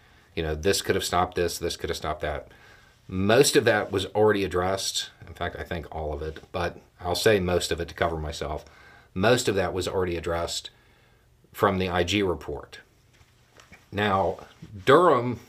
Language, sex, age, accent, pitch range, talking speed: English, male, 50-69, American, 95-120 Hz, 180 wpm